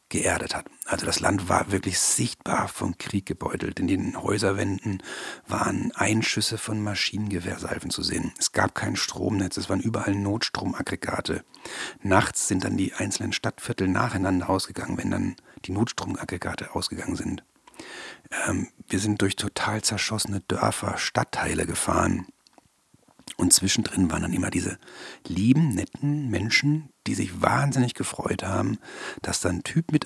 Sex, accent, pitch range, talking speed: male, German, 95-115 Hz, 140 wpm